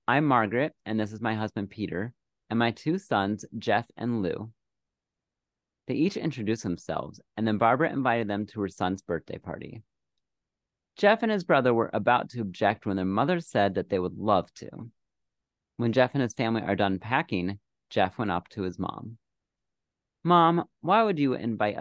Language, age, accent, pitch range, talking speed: English, 30-49, American, 100-135 Hz, 180 wpm